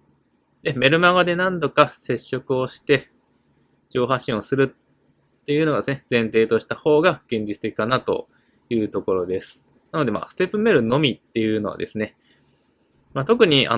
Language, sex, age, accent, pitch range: Japanese, male, 20-39, native, 110-165 Hz